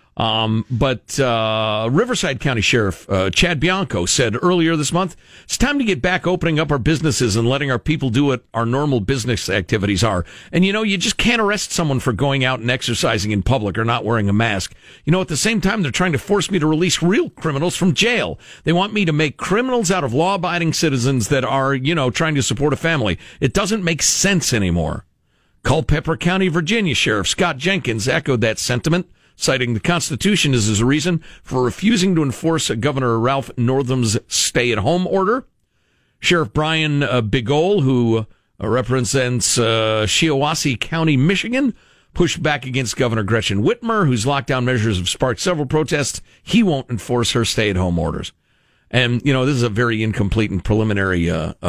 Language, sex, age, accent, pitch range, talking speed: English, male, 50-69, American, 115-170 Hz, 185 wpm